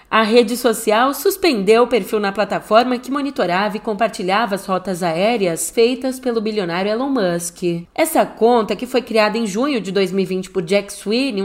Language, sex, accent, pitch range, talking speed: Portuguese, female, Brazilian, 205-265 Hz, 170 wpm